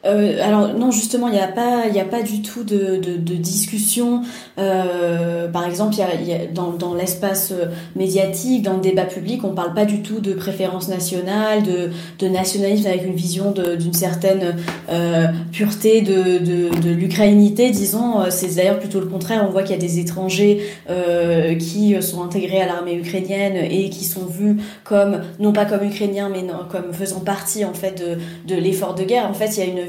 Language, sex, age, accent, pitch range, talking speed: French, female, 20-39, French, 180-205 Hz, 205 wpm